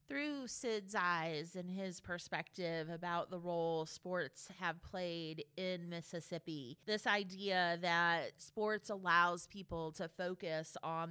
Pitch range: 170-200 Hz